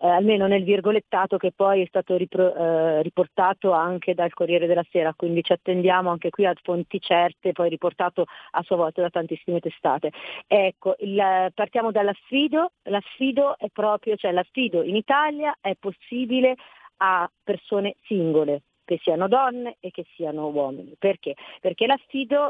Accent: native